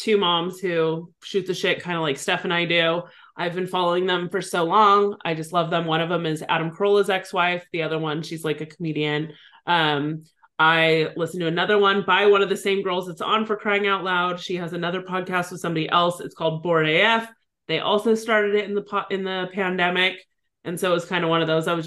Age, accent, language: 20-39, American, English